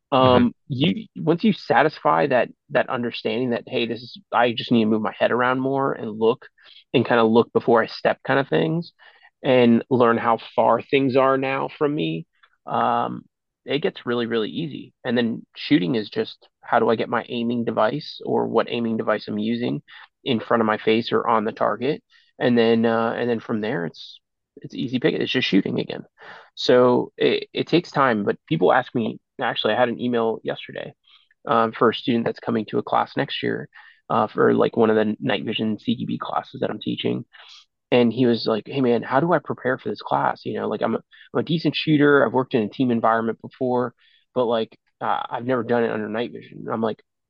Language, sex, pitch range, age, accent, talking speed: English, male, 115-130 Hz, 30-49, American, 215 wpm